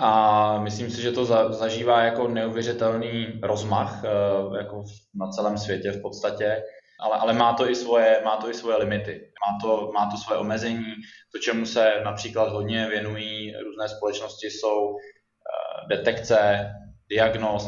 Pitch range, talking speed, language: 100-110 Hz, 145 wpm, Czech